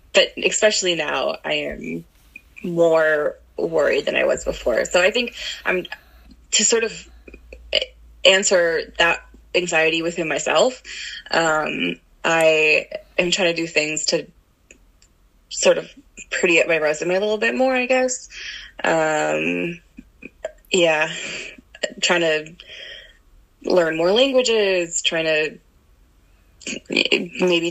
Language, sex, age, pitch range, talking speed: English, female, 20-39, 155-215 Hz, 115 wpm